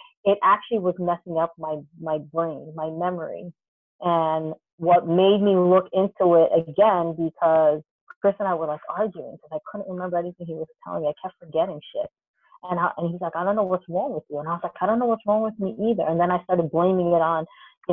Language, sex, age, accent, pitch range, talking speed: English, female, 30-49, American, 170-255 Hz, 235 wpm